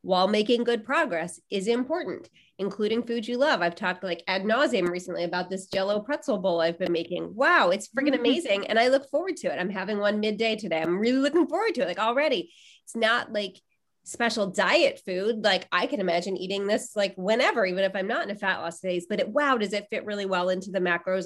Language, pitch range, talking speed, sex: English, 190-240 Hz, 230 wpm, female